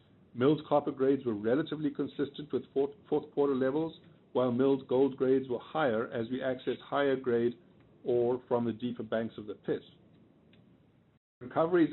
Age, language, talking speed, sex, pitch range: 50-69, English, 150 wpm, male, 125-145 Hz